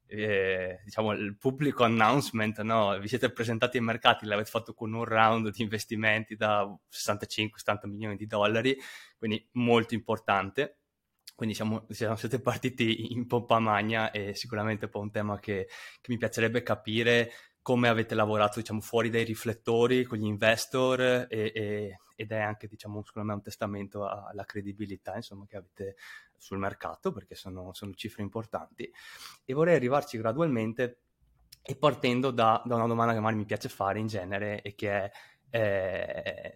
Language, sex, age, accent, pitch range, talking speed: Italian, male, 20-39, native, 105-115 Hz, 160 wpm